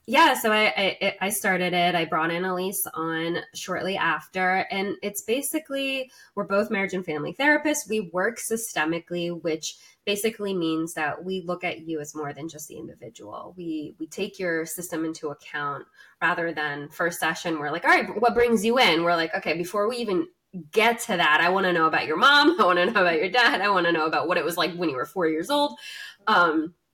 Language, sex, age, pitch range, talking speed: English, female, 20-39, 160-205 Hz, 220 wpm